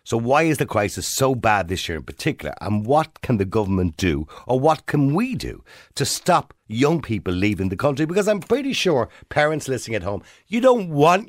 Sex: male